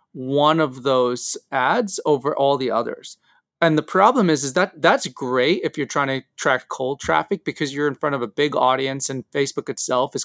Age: 30-49